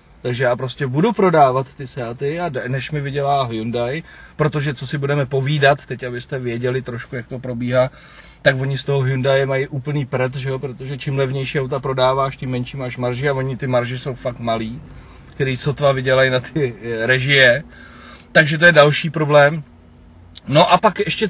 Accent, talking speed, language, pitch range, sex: native, 185 wpm, Czech, 130-170 Hz, male